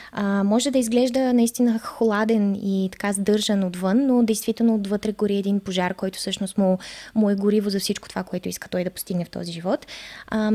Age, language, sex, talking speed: 20-39, Bulgarian, female, 195 wpm